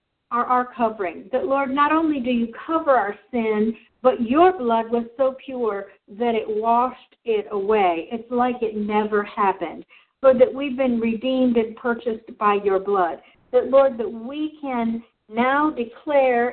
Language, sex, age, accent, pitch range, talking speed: English, female, 60-79, American, 220-270 Hz, 165 wpm